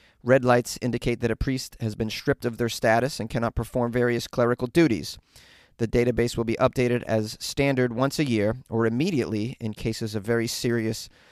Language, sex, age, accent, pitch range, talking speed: English, male, 30-49, American, 115-135 Hz, 185 wpm